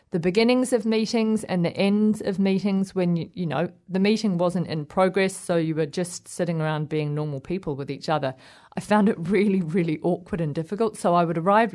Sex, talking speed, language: female, 210 wpm, English